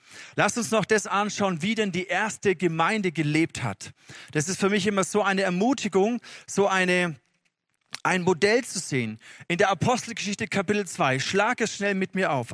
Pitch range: 155-210 Hz